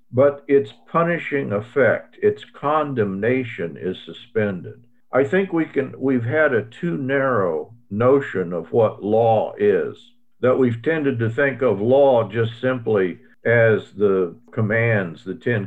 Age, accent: 50-69, American